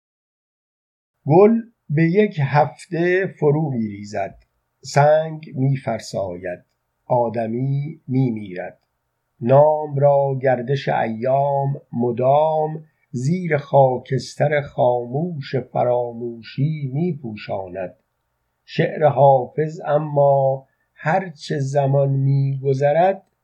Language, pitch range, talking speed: Persian, 125-150 Hz, 80 wpm